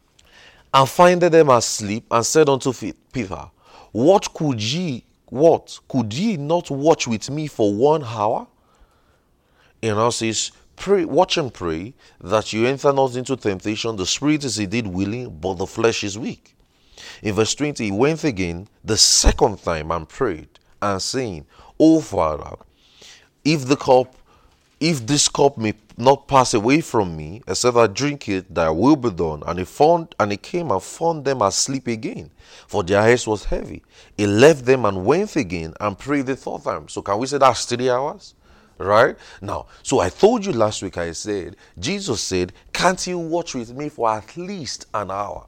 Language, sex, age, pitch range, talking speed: English, male, 30-49, 105-150 Hz, 180 wpm